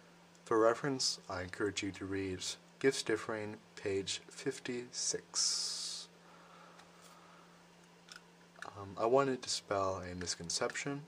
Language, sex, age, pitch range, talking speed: English, male, 30-49, 95-130 Hz, 95 wpm